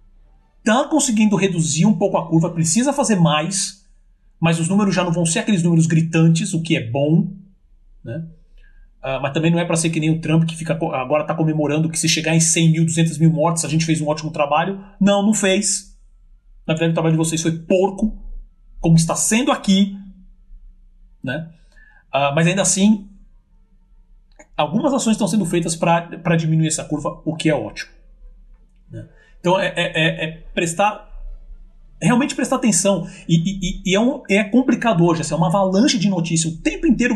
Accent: Brazilian